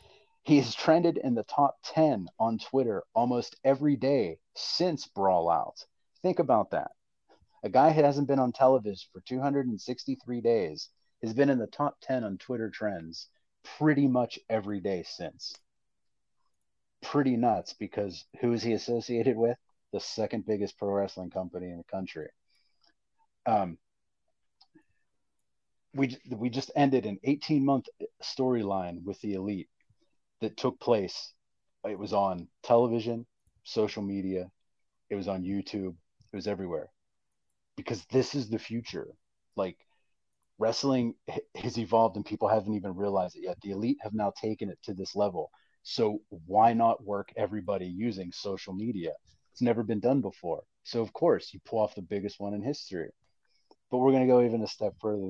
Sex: male